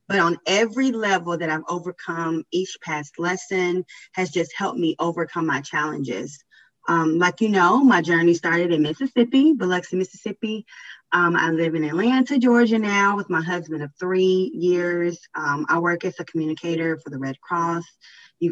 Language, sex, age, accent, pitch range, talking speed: English, female, 20-39, American, 165-195 Hz, 170 wpm